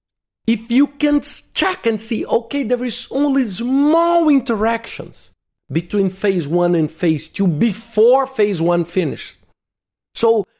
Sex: male